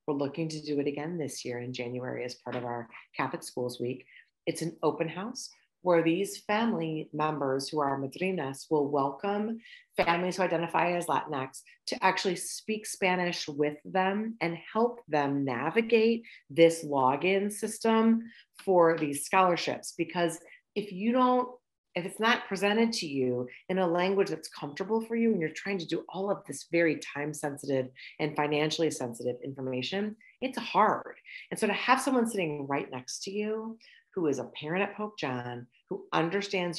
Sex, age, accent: female, 40-59, American